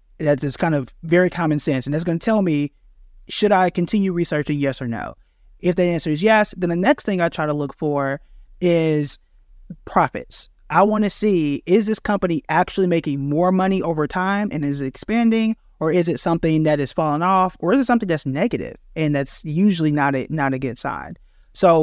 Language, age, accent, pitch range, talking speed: English, 30-49, American, 140-185 Hz, 210 wpm